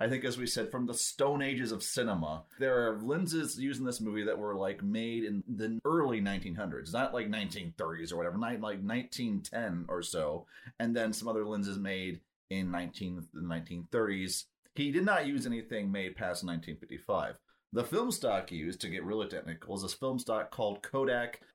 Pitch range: 100-155 Hz